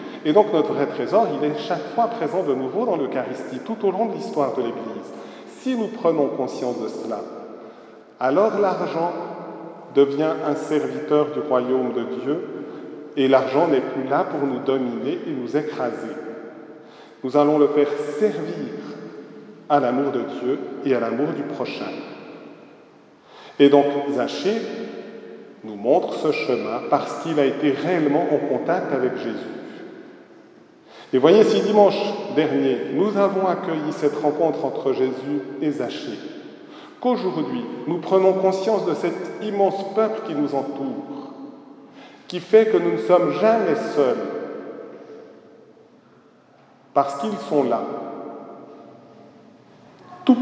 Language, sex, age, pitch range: French, male, 40-59, 140-205 Hz